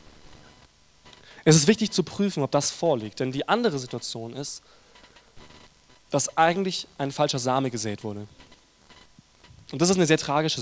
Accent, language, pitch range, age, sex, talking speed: German, German, 120-165 Hz, 20-39, male, 145 wpm